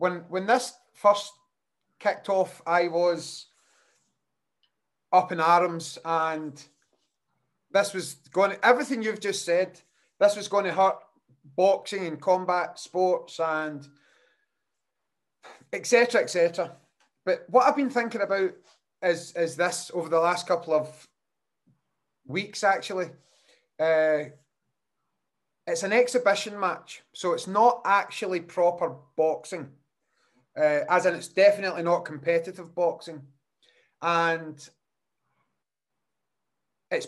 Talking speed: 115 wpm